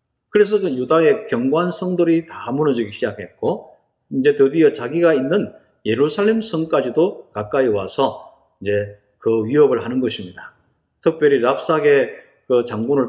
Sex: male